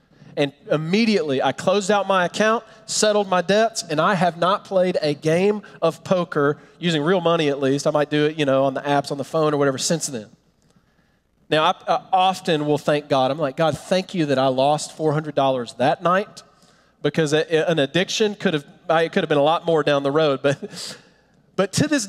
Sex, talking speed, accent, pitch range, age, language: male, 215 wpm, American, 150-205 Hz, 30-49, English